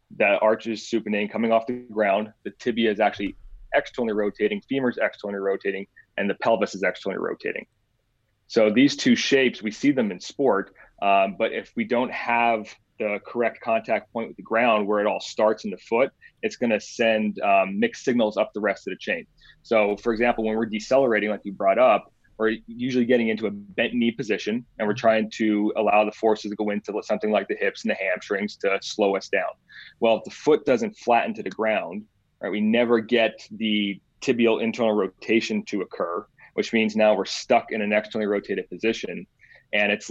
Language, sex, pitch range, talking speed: English, male, 105-120 Hz, 200 wpm